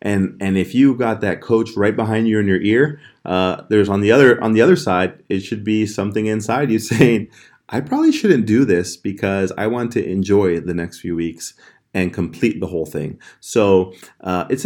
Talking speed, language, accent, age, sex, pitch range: 210 wpm, English, American, 30-49, male, 95-115 Hz